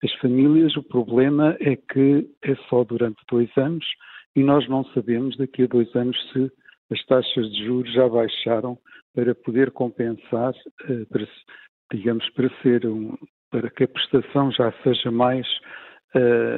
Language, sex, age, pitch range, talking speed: Portuguese, male, 60-79, 125-145 Hz, 150 wpm